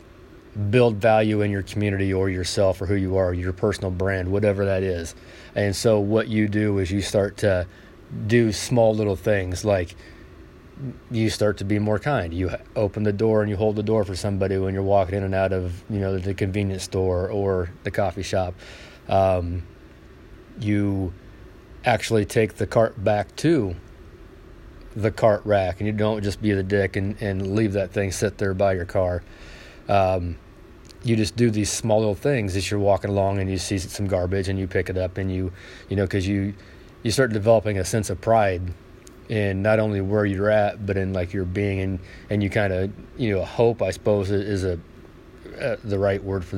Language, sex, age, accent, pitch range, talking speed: English, male, 30-49, American, 95-105 Hz, 200 wpm